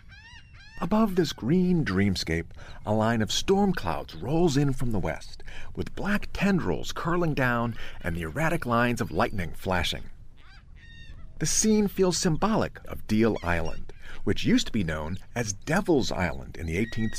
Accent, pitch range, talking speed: American, 90-150 Hz, 155 wpm